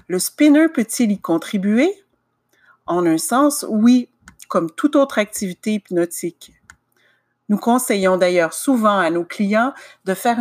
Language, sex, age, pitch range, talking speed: French, female, 50-69, 170-240 Hz, 135 wpm